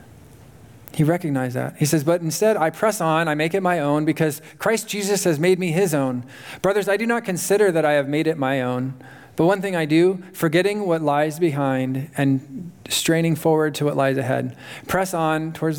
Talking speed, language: 205 wpm, English